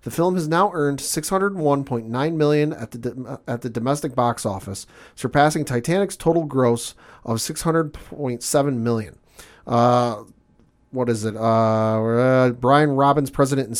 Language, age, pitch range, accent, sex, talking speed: English, 40-59, 115-150 Hz, American, male, 135 wpm